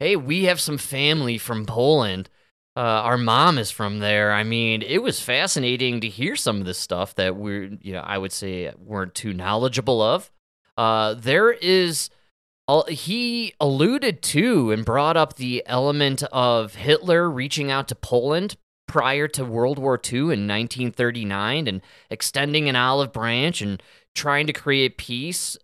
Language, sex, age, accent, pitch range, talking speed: English, male, 20-39, American, 125-170 Hz, 165 wpm